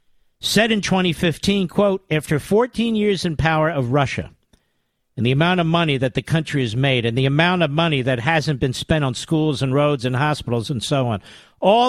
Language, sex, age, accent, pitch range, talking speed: English, male, 50-69, American, 150-190 Hz, 200 wpm